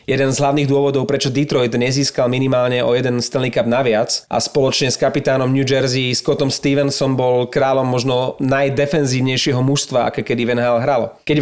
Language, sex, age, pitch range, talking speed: Slovak, male, 30-49, 120-145 Hz, 165 wpm